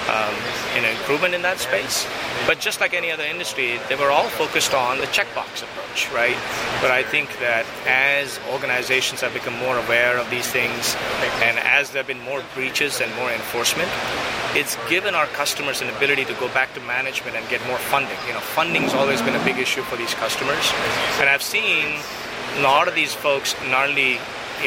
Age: 30-49